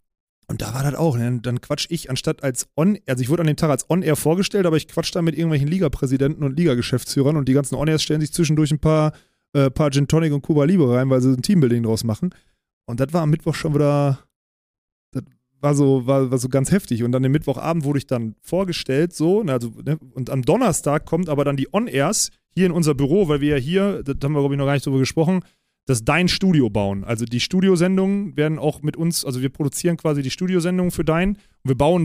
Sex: male